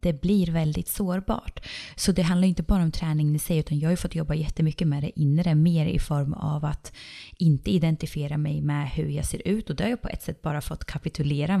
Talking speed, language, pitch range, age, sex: 235 wpm, Swedish, 155-195 Hz, 20-39, female